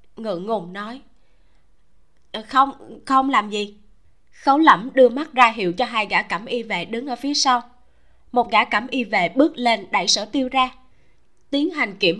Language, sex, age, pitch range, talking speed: Vietnamese, female, 20-39, 195-265 Hz, 180 wpm